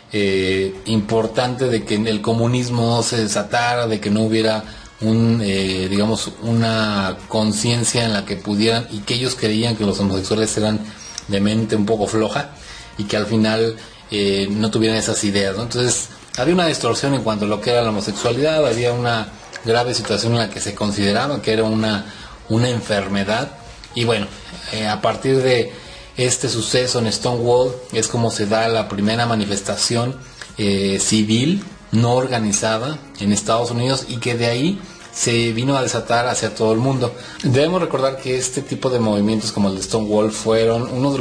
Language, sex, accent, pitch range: Spanish, male, Mexican, 105-120 Hz